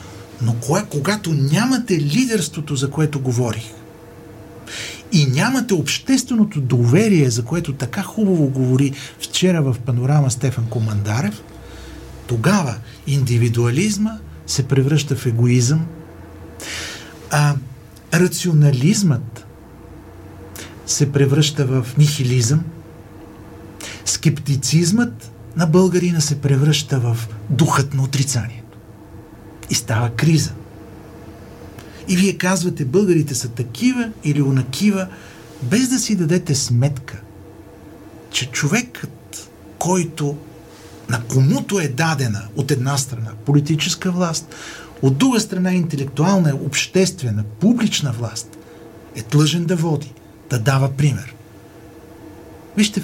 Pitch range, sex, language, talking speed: 120-165 Hz, male, Bulgarian, 95 wpm